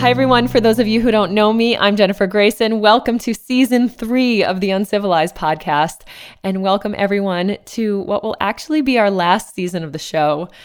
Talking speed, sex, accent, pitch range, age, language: 195 wpm, female, American, 160-210 Hz, 20-39, English